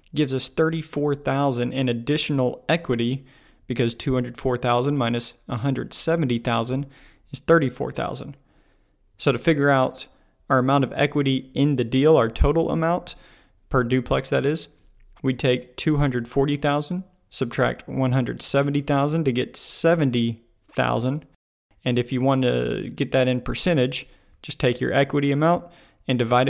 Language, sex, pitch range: English, male, 125-150 Hz